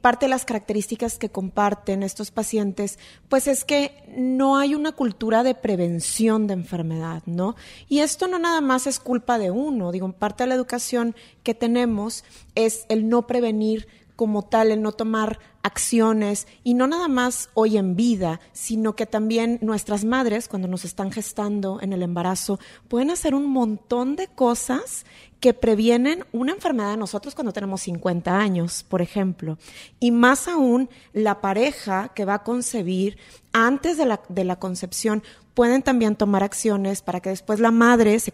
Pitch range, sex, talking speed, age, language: 200-240 Hz, female, 165 wpm, 30-49, Spanish